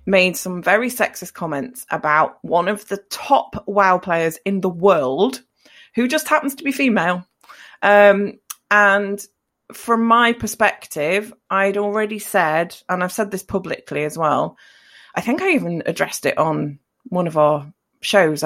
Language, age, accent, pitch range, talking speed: English, 30-49, British, 160-205 Hz, 155 wpm